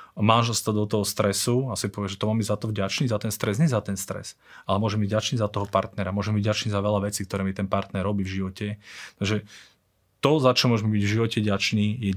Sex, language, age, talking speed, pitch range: male, Slovak, 30-49, 255 wpm, 100-115 Hz